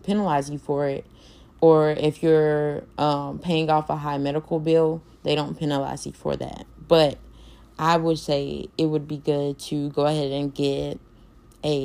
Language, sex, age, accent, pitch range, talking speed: English, female, 10-29, American, 145-165 Hz, 170 wpm